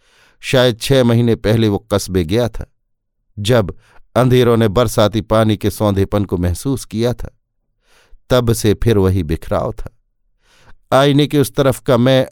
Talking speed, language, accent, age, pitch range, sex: 150 wpm, Hindi, native, 50-69, 105-130 Hz, male